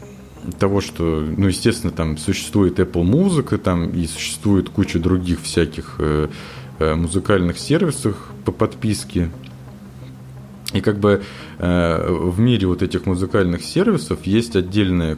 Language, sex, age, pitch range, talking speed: Russian, male, 20-39, 80-100 Hz, 115 wpm